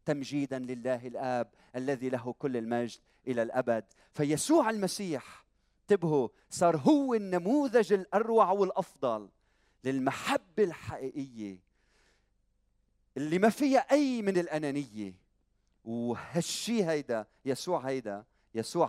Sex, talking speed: male, 100 wpm